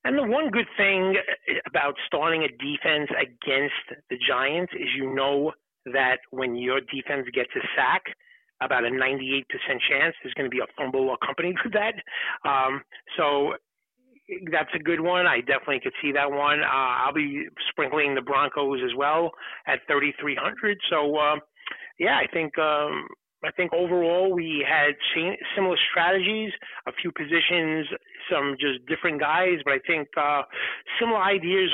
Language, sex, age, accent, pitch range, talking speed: English, male, 30-49, American, 135-180 Hz, 160 wpm